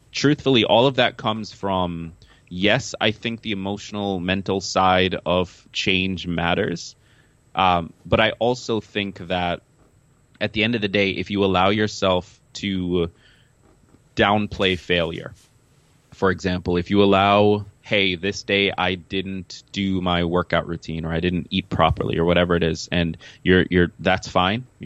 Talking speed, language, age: 150 wpm, English, 20-39